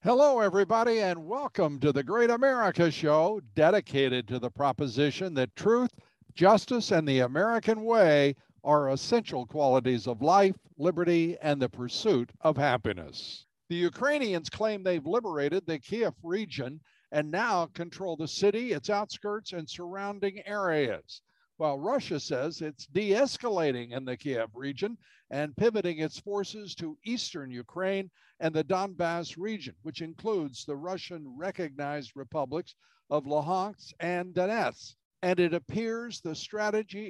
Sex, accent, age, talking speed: male, American, 60-79, 135 wpm